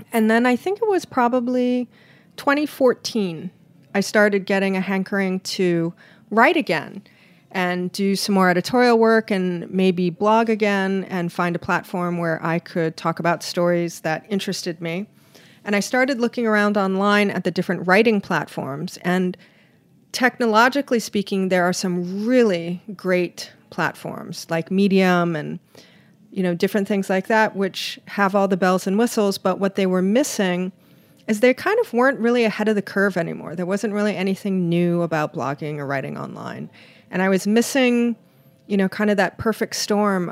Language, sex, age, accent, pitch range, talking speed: English, female, 40-59, American, 180-220 Hz, 165 wpm